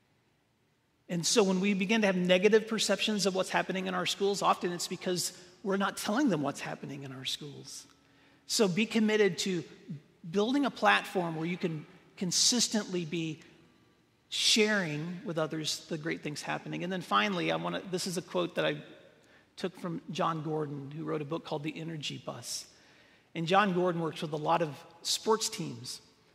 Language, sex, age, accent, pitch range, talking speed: English, male, 40-59, American, 160-190 Hz, 180 wpm